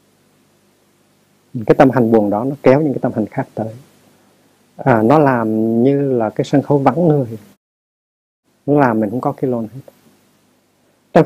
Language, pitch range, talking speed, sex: Vietnamese, 115-145 Hz, 170 wpm, male